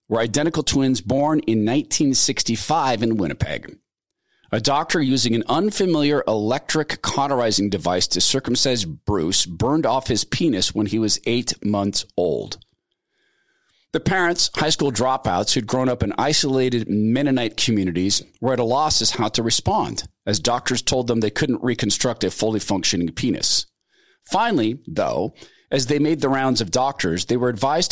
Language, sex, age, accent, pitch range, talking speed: English, male, 40-59, American, 110-140 Hz, 155 wpm